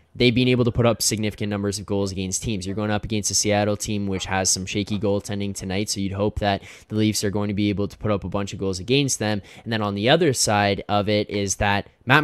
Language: English